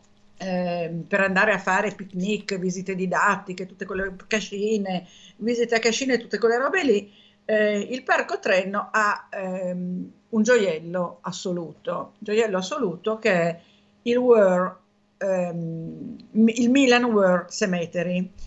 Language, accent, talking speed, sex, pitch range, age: Italian, native, 115 wpm, female, 175-215 Hz, 50-69